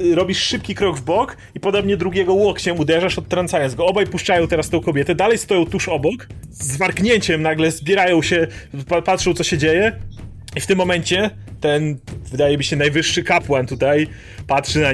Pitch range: 125-180 Hz